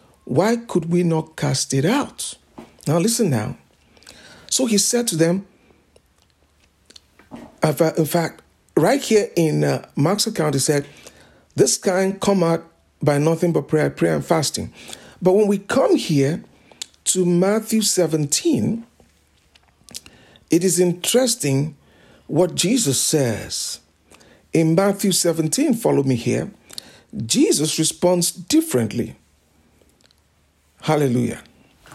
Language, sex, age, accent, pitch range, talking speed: English, male, 60-79, Nigerian, 140-195 Hz, 110 wpm